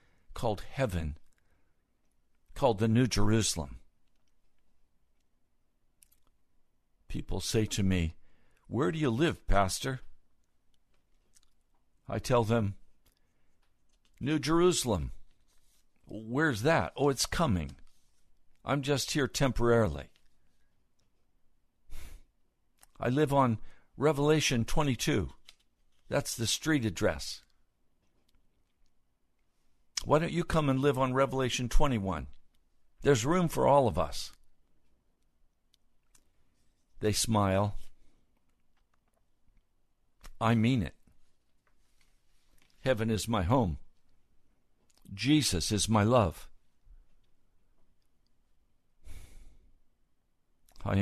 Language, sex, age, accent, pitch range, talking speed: English, male, 60-79, American, 90-130 Hz, 80 wpm